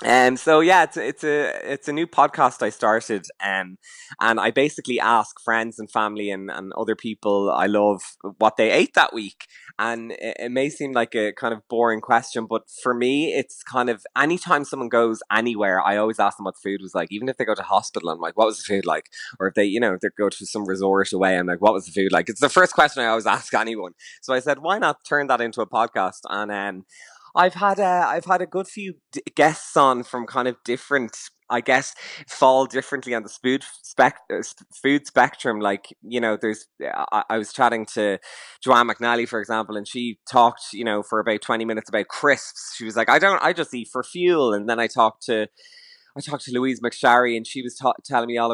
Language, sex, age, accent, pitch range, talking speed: English, male, 20-39, Irish, 110-135 Hz, 235 wpm